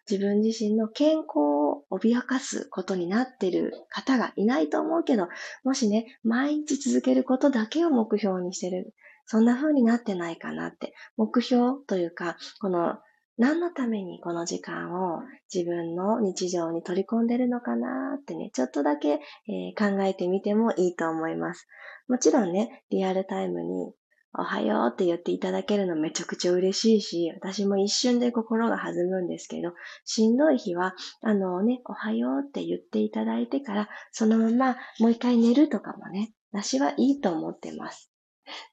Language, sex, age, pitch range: Japanese, female, 20-39, 180-250 Hz